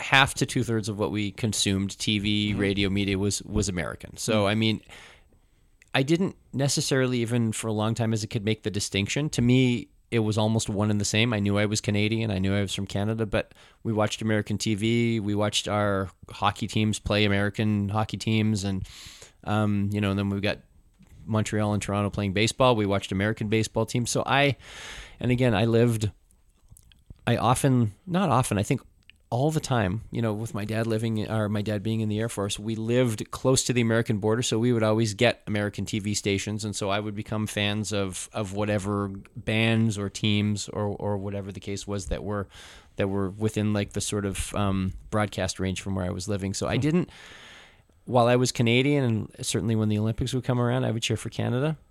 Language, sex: English, male